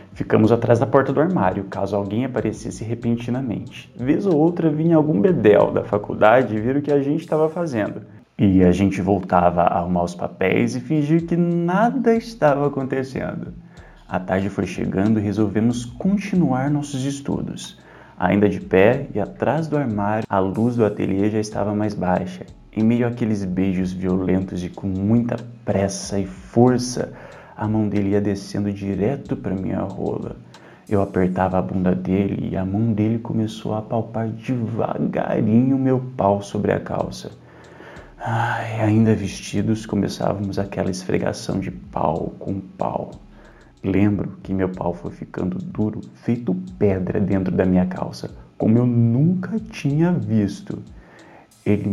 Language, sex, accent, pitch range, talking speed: Portuguese, male, Brazilian, 95-130 Hz, 150 wpm